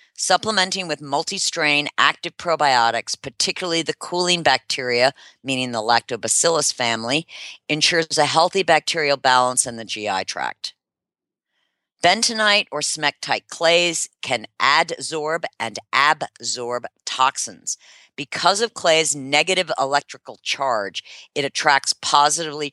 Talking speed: 105 wpm